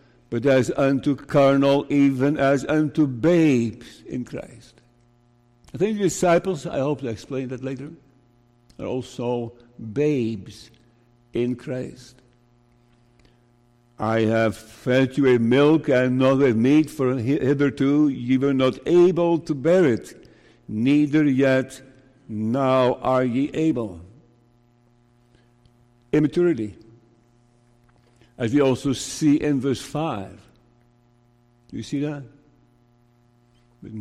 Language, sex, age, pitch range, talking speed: English, male, 60-79, 120-140 Hz, 110 wpm